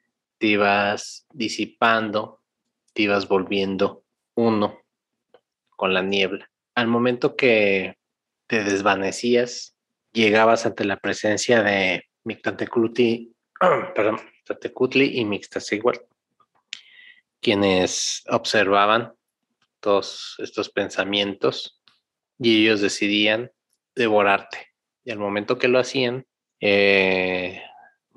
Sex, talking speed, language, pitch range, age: male, 90 wpm, Spanish, 100-115 Hz, 30-49